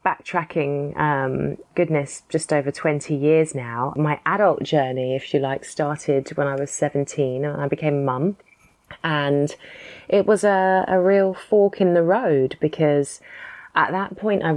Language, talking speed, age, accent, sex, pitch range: English, 155 wpm, 20-39, British, female, 140-185 Hz